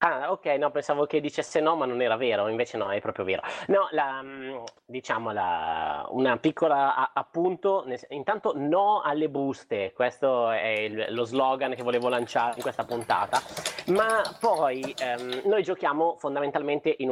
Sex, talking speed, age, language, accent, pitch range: male, 160 wpm, 30-49, Italian, native, 120-150 Hz